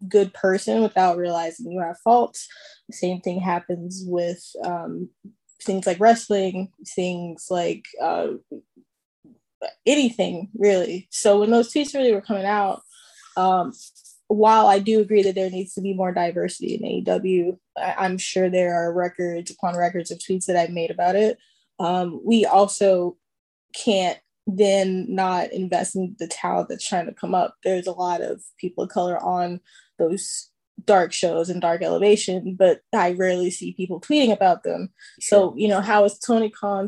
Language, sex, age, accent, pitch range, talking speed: English, female, 10-29, American, 180-205 Hz, 165 wpm